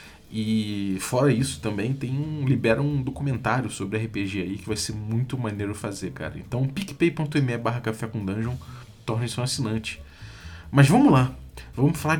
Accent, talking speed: Brazilian, 160 wpm